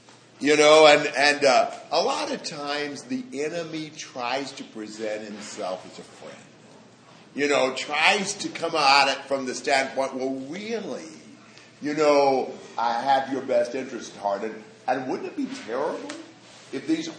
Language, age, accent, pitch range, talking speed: English, 50-69, American, 135-185 Hz, 160 wpm